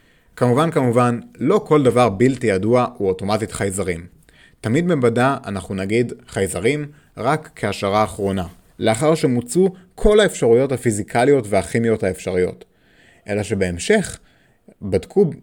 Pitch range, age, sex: 110-165 Hz, 30-49, male